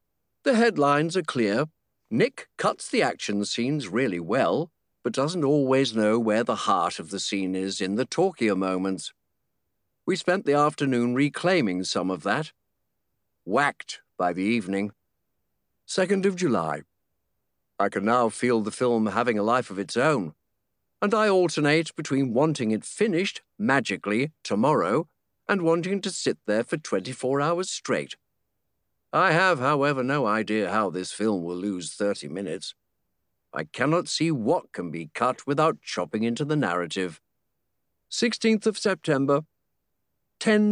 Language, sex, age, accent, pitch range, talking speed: English, male, 50-69, British, 110-165 Hz, 145 wpm